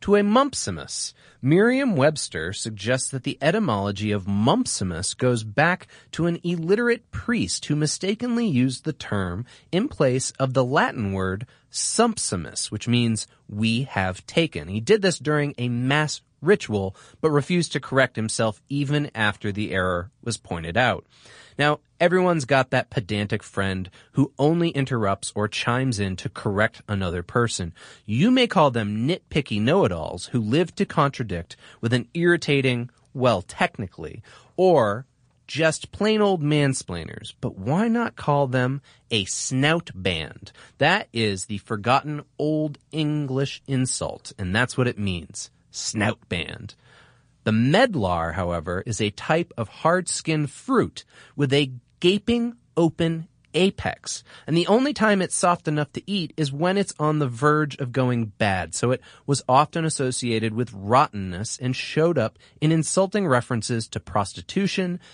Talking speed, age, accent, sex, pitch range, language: 145 wpm, 30-49, American, male, 110-160 Hz, English